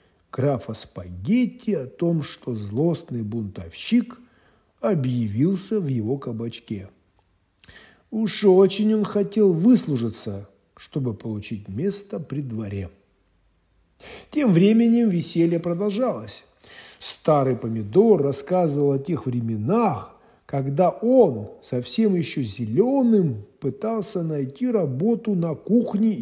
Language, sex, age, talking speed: Russian, male, 50-69, 95 wpm